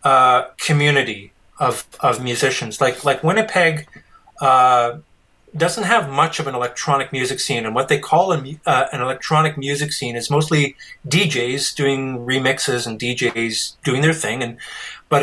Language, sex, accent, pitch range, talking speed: English, male, American, 130-165 Hz, 155 wpm